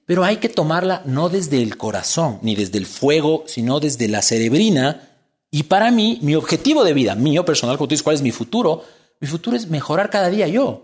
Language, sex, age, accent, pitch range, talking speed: Spanish, male, 40-59, Mexican, 125-200 Hz, 210 wpm